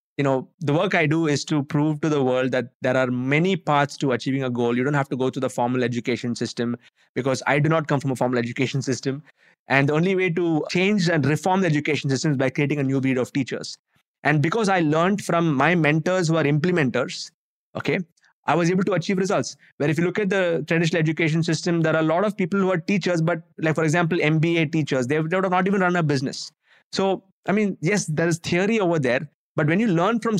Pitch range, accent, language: 135-175 Hz, Indian, English